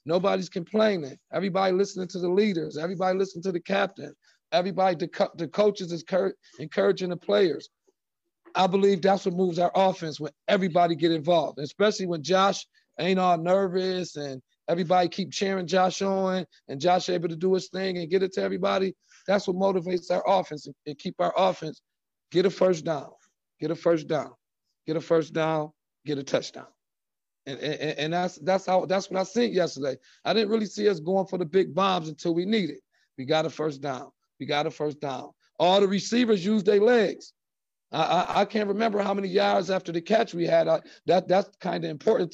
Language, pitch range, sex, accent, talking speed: English, 170-200 Hz, male, American, 200 wpm